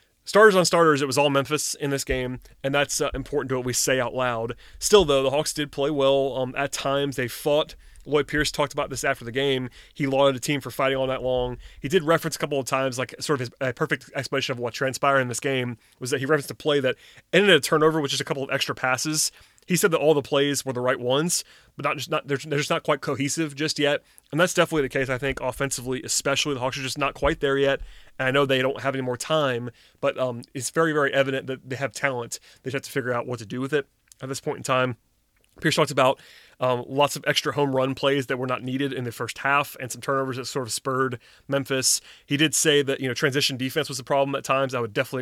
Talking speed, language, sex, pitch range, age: 265 wpm, English, male, 130-145 Hz, 30-49